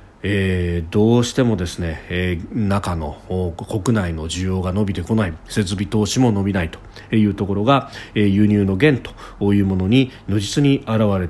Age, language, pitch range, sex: 40-59, Japanese, 95-130 Hz, male